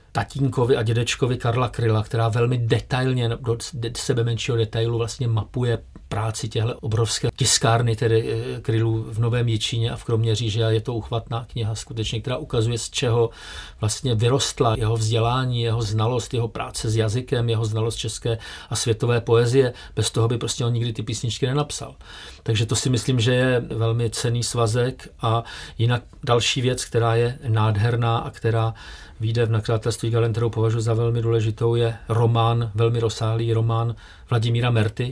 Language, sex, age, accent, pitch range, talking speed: Czech, male, 40-59, native, 115-125 Hz, 160 wpm